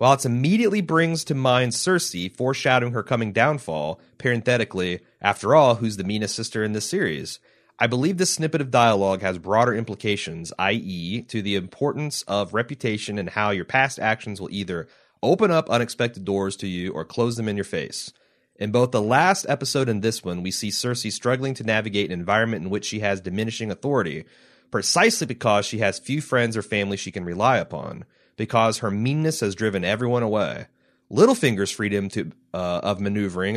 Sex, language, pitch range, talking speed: male, English, 100-130 Hz, 180 wpm